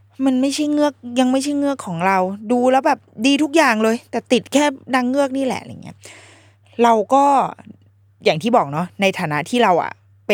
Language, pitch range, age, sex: Thai, 150-240 Hz, 20-39, female